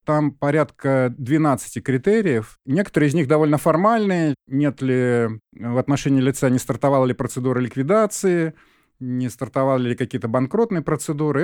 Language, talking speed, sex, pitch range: Russian, 130 wpm, male, 125-160 Hz